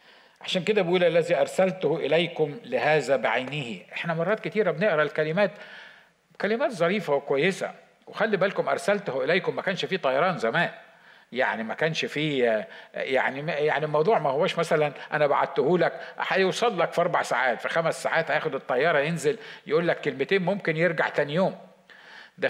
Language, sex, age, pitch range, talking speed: Arabic, male, 50-69, 145-205 Hz, 150 wpm